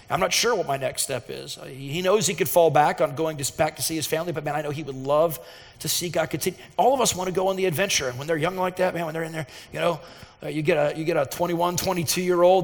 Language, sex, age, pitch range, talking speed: English, male, 40-59, 150-195 Hz, 305 wpm